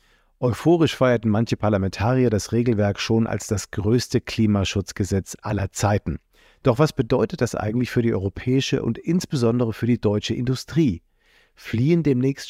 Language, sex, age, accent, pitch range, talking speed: German, male, 50-69, German, 105-130 Hz, 140 wpm